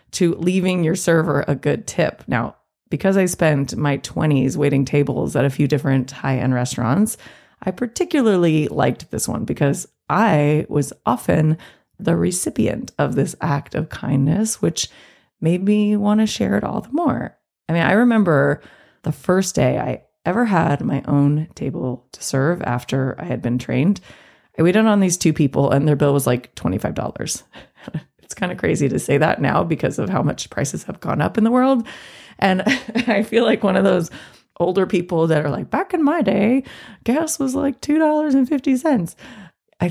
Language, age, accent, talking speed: English, 20-39, American, 185 wpm